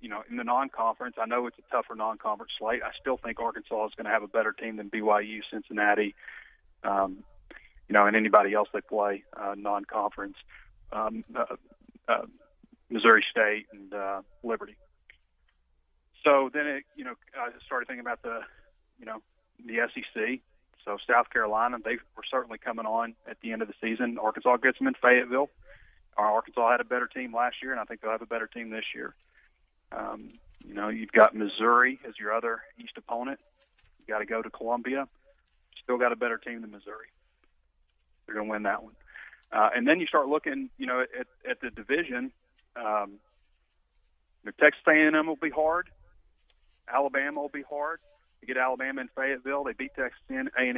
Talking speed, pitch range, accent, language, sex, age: 180 wpm, 100-140 Hz, American, English, male, 30-49